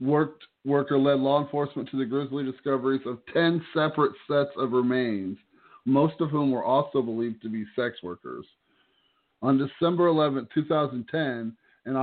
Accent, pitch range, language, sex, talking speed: American, 120-140 Hz, English, male, 140 wpm